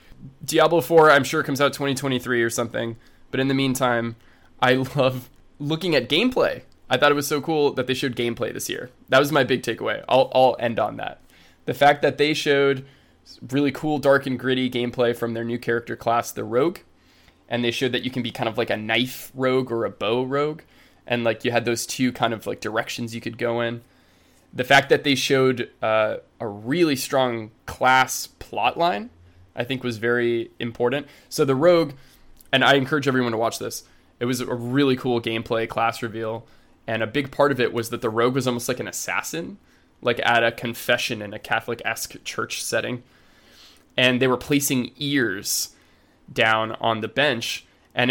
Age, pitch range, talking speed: 20-39, 115-140 Hz, 200 wpm